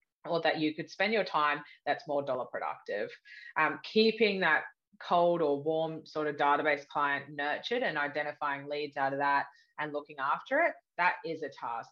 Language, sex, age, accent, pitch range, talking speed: English, female, 20-39, Australian, 145-180 Hz, 180 wpm